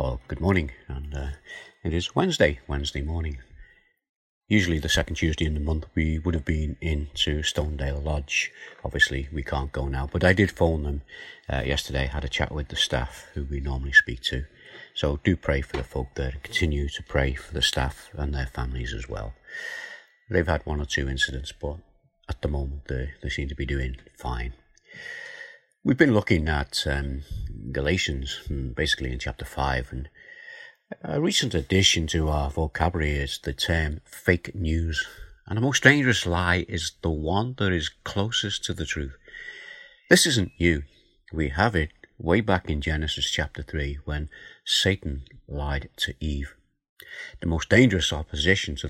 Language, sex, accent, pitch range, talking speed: English, male, British, 70-90 Hz, 175 wpm